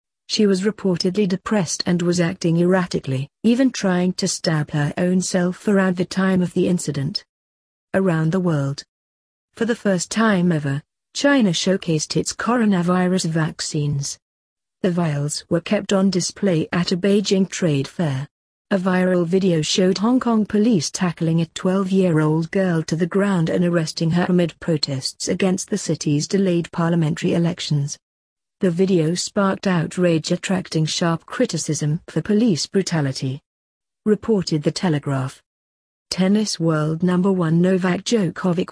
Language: English